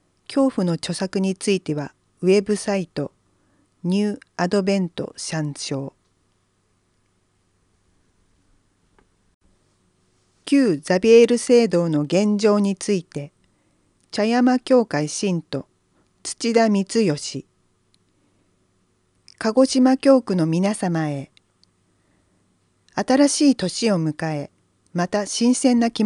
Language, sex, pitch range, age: Japanese, female, 140-225 Hz, 40-59